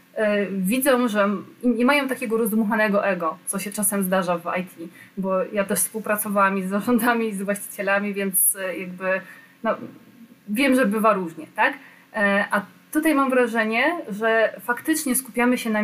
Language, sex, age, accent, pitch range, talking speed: Polish, female, 20-39, native, 200-245 Hz, 150 wpm